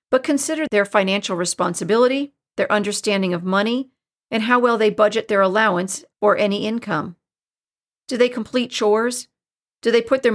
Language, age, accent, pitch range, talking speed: English, 40-59, American, 195-240 Hz, 155 wpm